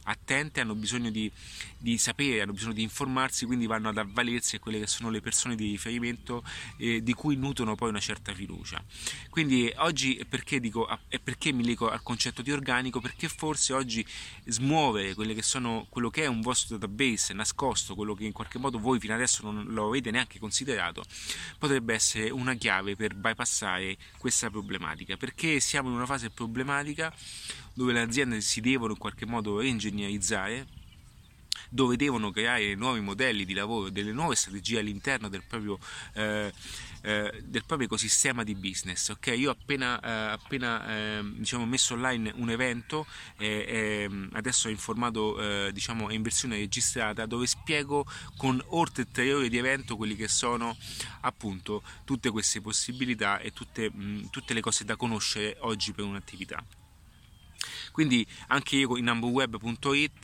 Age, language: 30-49, Italian